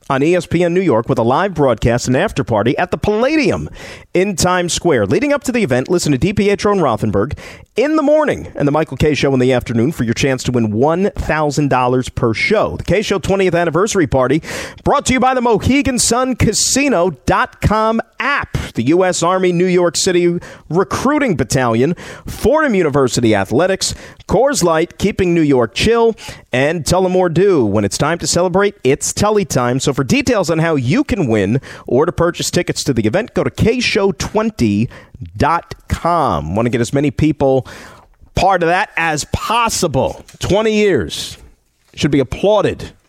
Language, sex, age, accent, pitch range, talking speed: English, male, 40-59, American, 125-180 Hz, 170 wpm